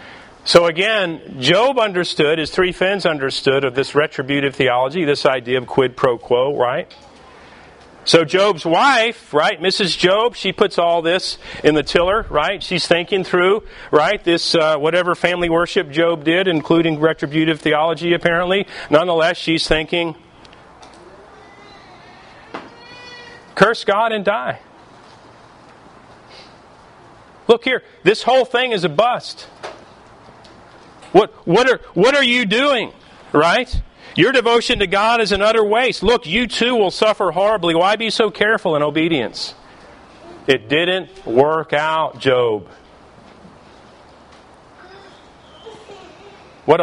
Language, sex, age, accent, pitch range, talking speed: English, male, 40-59, American, 160-220 Hz, 125 wpm